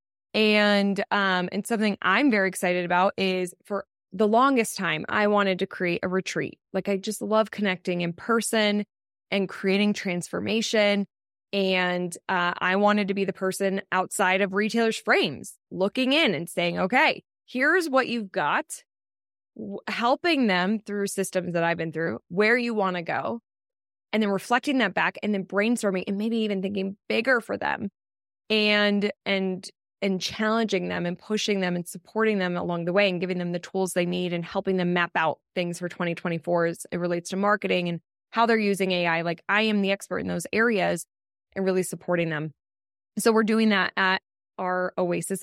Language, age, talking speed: English, 20-39, 180 wpm